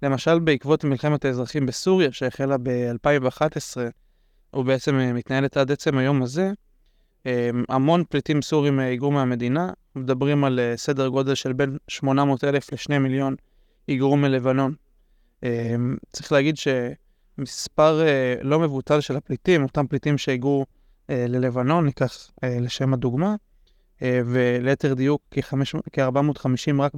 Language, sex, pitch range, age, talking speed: Hebrew, male, 130-150 Hz, 20-39, 105 wpm